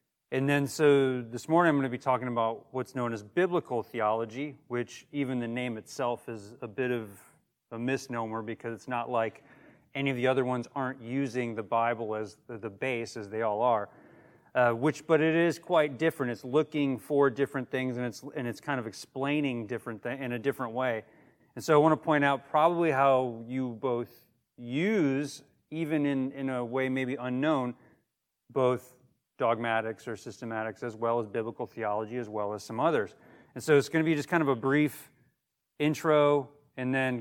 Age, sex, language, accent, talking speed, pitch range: 40-59, male, English, American, 190 wpm, 115-135 Hz